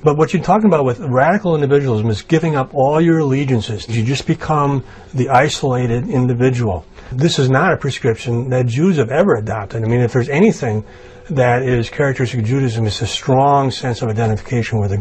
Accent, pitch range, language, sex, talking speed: American, 115-140 Hz, English, male, 190 wpm